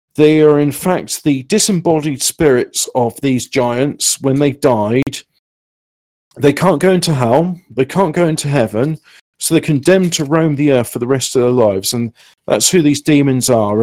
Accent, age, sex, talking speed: British, 50-69, male, 180 wpm